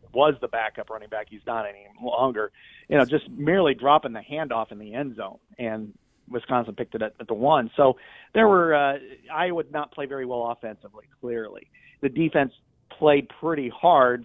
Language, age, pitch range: English, 40-59, 120-145 Hz